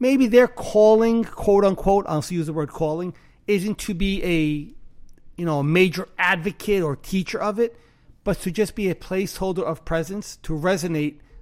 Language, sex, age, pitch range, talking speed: English, male, 30-49, 150-190 Hz, 180 wpm